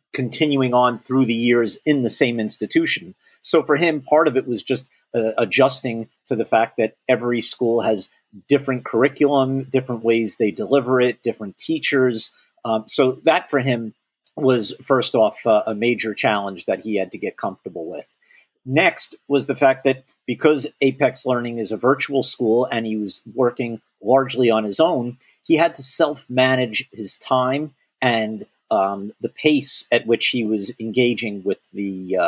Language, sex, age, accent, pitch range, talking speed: English, male, 40-59, American, 115-140 Hz, 170 wpm